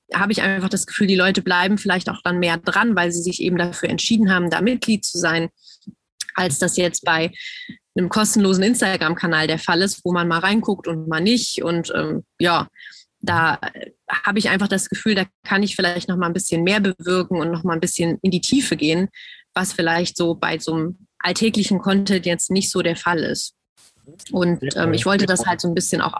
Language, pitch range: German, 175-200 Hz